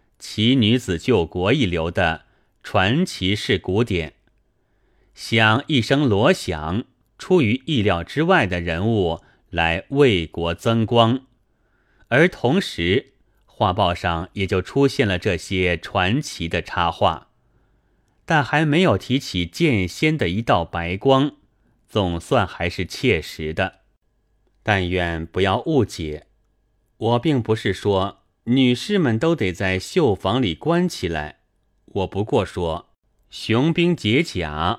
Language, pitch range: Chinese, 90-120 Hz